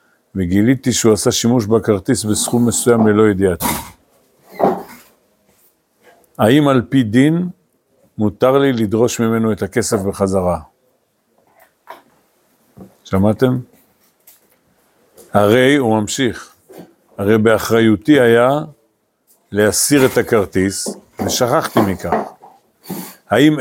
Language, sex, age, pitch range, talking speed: Hebrew, male, 60-79, 105-130 Hz, 85 wpm